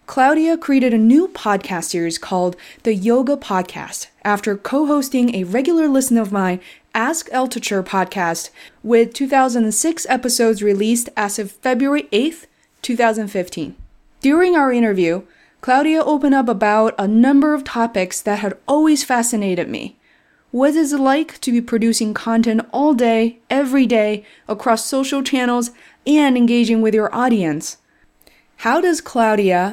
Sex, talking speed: female, 135 wpm